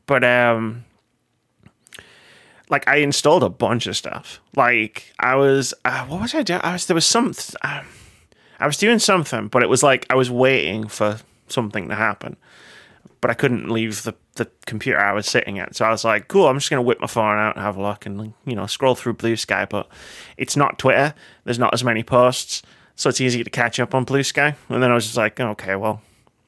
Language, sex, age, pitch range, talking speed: English, male, 20-39, 110-135 Hz, 220 wpm